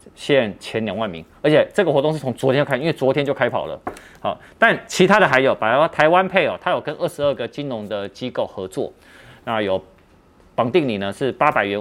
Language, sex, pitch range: Chinese, male, 100-145 Hz